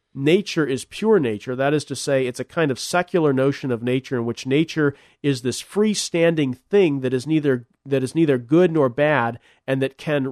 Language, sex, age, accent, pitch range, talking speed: English, male, 40-59, American, 125-165 Hz, 210 wpm